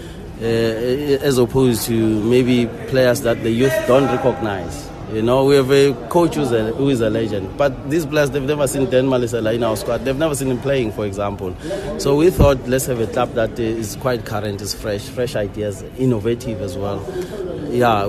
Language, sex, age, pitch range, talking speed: English, male, 30-49, 115-135 Hz, 195 wpm